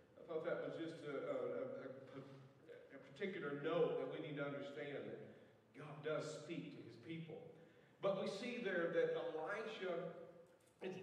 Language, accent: English, American